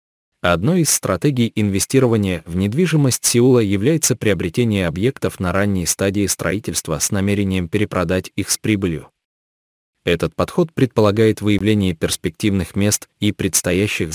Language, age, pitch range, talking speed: Russian, 20-39, 90-115 Hz, 120 wpm